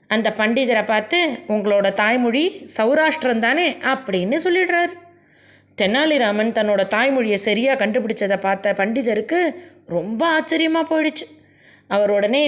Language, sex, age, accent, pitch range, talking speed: Tamil, female, 20-39, native, 195-290 Hz, 95 wpm